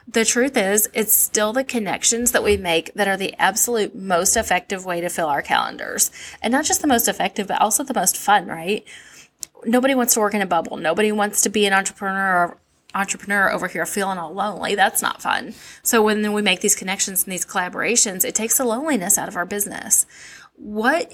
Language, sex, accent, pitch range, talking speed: English, female, American, 195-240 Hz, 215 wpm